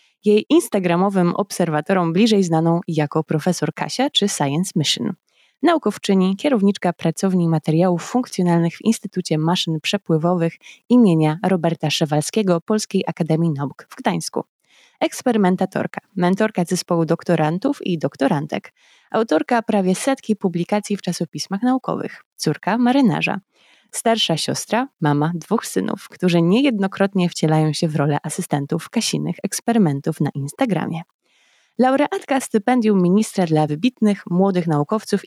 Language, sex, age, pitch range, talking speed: Polish, female, 20-39, 165-220 Hz, 110 wpm